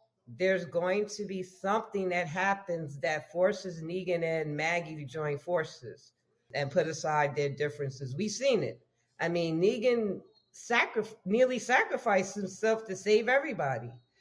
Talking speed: 135 wpm